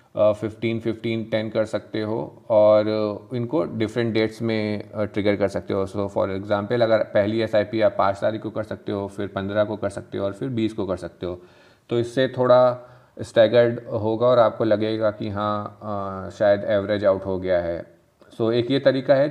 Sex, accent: male, native